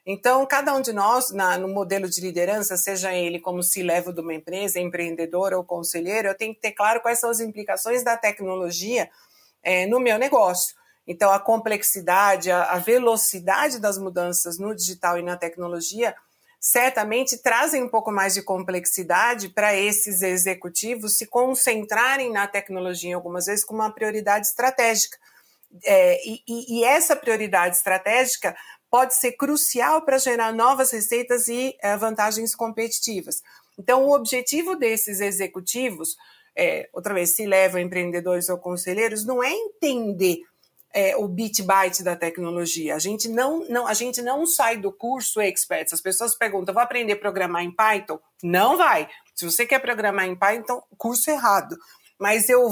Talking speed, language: 160 wpm, Portuguese